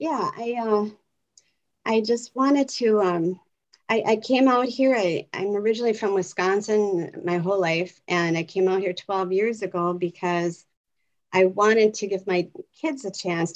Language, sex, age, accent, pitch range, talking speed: English, female, 40-59, American, 170-200 Hz, 170 wpm